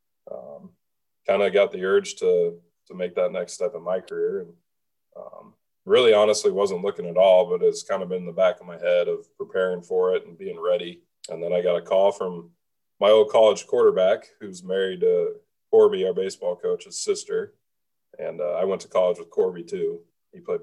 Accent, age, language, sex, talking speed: American, 20-39, English, male, 205 wpm